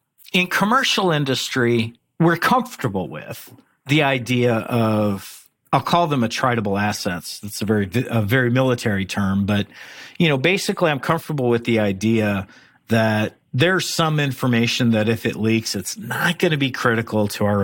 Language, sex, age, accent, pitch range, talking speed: English, male, 50-69, American, 100-130 Hz, 155 wpm